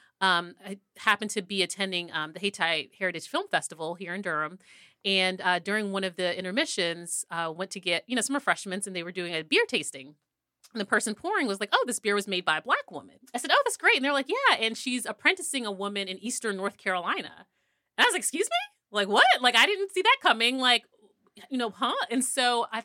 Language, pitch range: English, 180-240 Hz